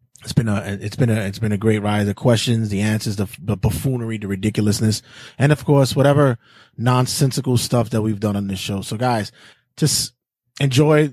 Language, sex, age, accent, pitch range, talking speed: English, male, 20-39, American, 110-140 Hz, 195 wpm